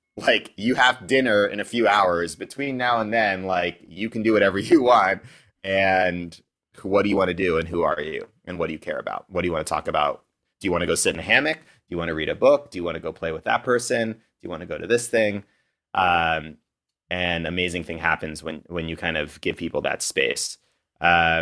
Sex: male